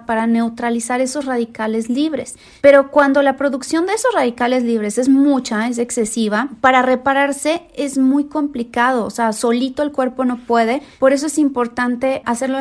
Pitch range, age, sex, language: 225-265 Hz, 30-49, female, Spanish